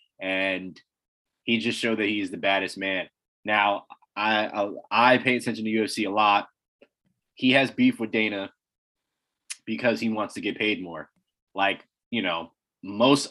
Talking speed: 160 wpm